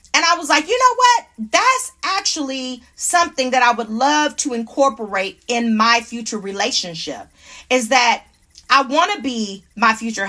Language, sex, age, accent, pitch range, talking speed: English, female, 40-59, American, 210-280 Hz, 165 wpm